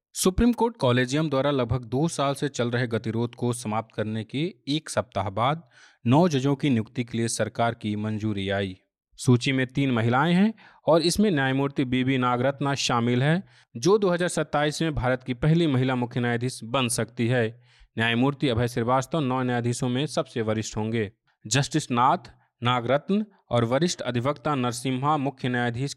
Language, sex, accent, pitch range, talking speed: Hindi, male, native, 120-145 Hz, 165 wpm